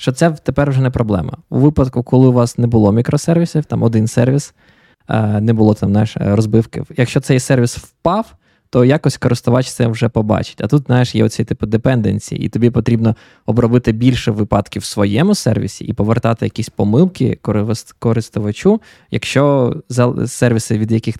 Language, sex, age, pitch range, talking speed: Ukrainian, male, 20-39, 115-145 Hz, 160 wpm